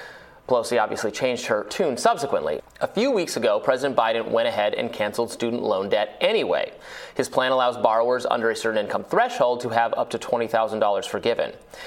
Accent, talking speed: American, 175 wpm